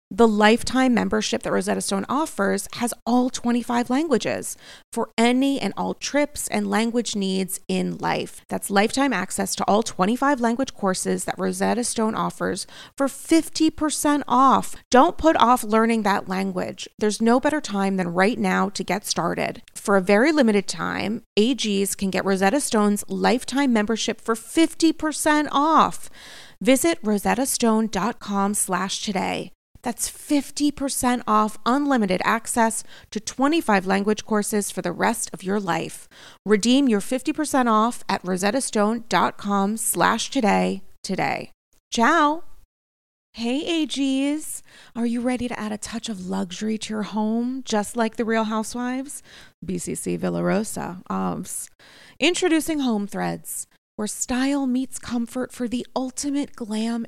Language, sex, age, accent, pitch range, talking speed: English, female, 30-49, American, 195-255 Hz, 135 wpm